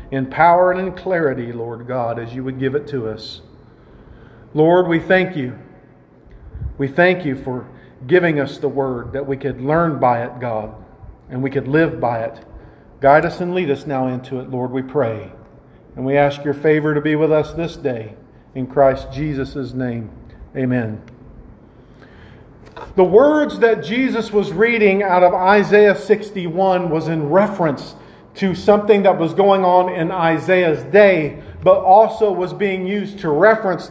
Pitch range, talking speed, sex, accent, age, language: 135-205 Hz, 170 wpm, male, American, 40-59, English